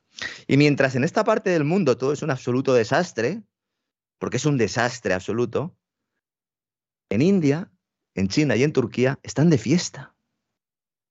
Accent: Spanish